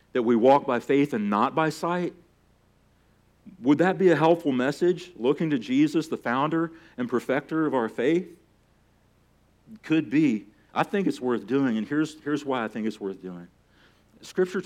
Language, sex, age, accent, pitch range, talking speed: English, male, 40-59, American, 105-155 Hz, 170 wpm